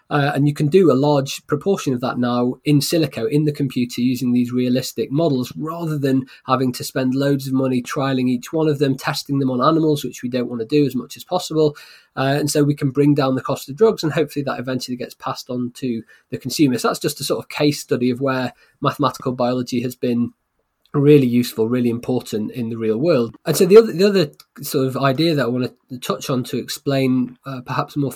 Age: 20-39